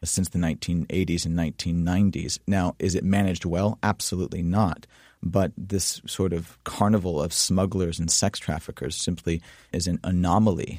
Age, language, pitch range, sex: 30-49, English, 85-95 Hz, male